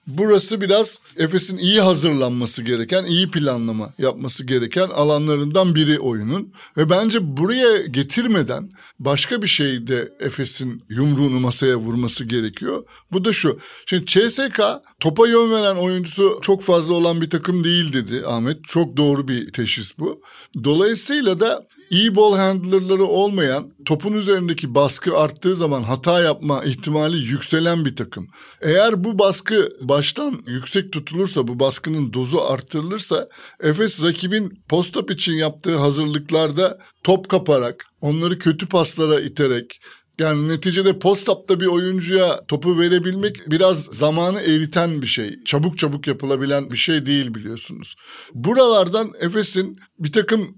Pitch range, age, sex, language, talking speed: 140-190 Hz, 60-79, male, Turkish, 130 wpm